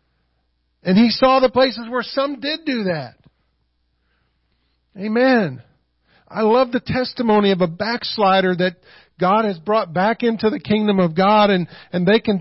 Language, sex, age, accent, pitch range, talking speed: English, male, 50-69, American, 190-245 Hz, 155 wpm